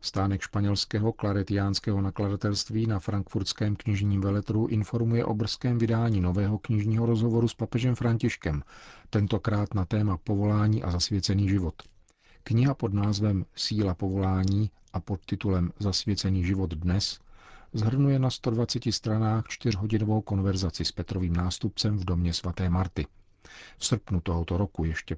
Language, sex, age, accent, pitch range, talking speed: Czech, male, 40-59, native, 90-110 Hz, 130 wpm